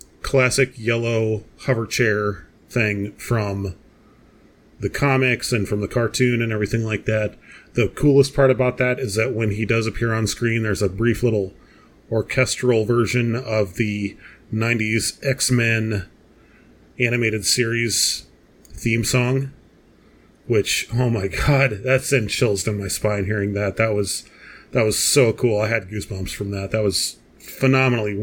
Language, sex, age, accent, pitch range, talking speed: English, male, 30-49, American, 105-125 Hz, 145 wpm